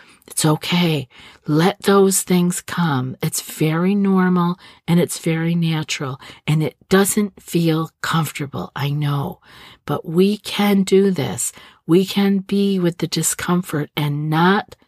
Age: 50-69